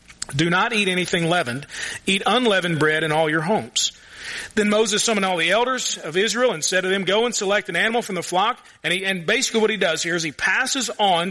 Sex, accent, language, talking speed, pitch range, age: male, American, English, 230 wpm, 175-215 Hz, 40-59